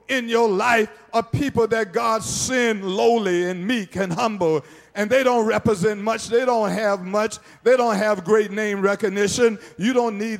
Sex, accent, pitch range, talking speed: male, American, 205-240 Hz, 180 wpm